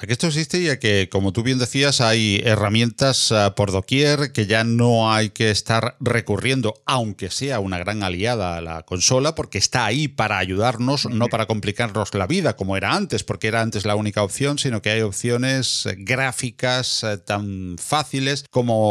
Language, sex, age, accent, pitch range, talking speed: Spanish, male, 40-59, Spanish, 110-145 Hz, 175 wpm